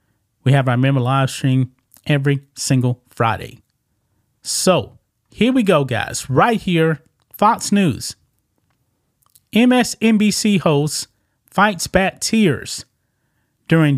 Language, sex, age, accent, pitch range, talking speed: English, male, 30-49, American, 120-165 Hz, 105 wpm